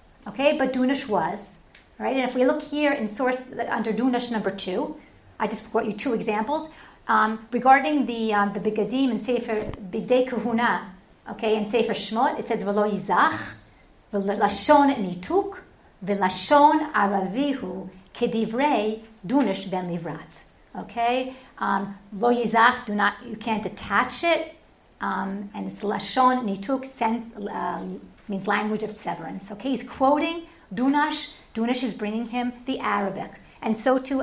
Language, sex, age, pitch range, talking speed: English, female, 40-59, 205-265 Hz, 140 wpm